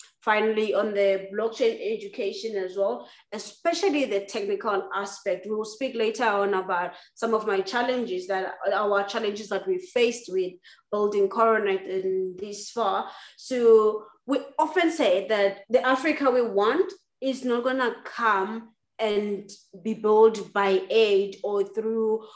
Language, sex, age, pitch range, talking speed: English, female, 20-39, 205-255 Hz, 145 wpm